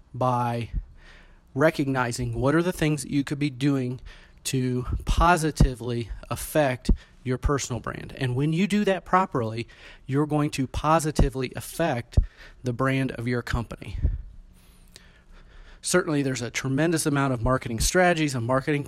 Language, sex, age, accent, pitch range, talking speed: English, male, 30-49, American, 120-155 Hz, 135 wpm